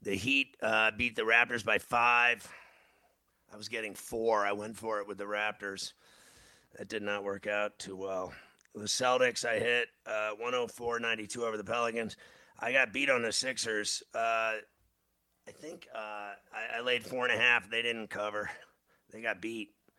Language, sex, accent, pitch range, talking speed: English, male, American, 105-120 Hz, 175 wpm